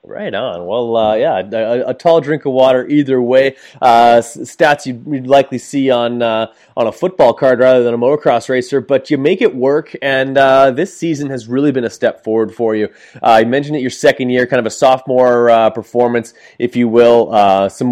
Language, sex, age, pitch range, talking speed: English, male, 30-49, 115-135 Hz, 220 wpm